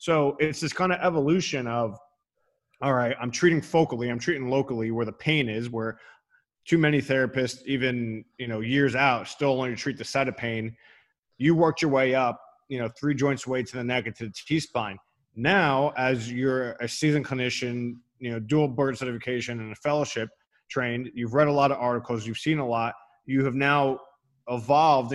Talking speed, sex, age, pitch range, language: 195 wpm, male, 30-49, 120-140 Hz, English